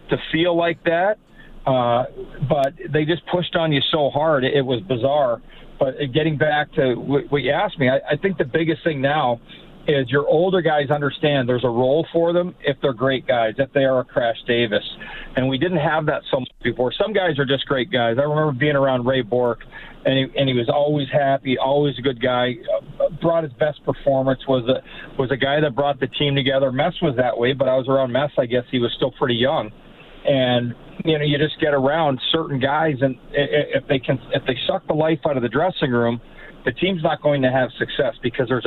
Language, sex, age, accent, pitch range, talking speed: English, male, 40-59, American, 130-155 Hz, 220 wpm